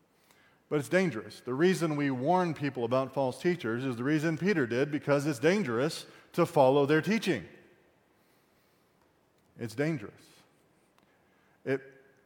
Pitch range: 110-140 Hz